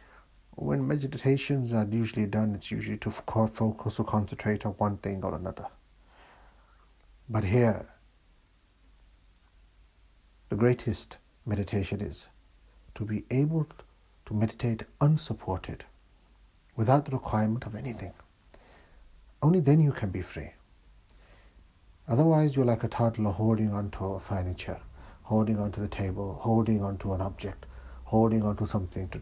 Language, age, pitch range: English, 60-79, 90-110 Hz